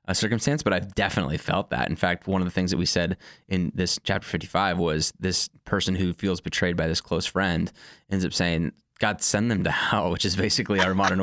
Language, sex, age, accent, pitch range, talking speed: English, male, 20-39, American, 85-100 Hz, 230 wpm